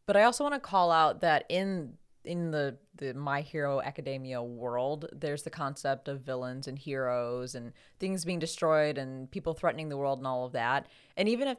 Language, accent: English, American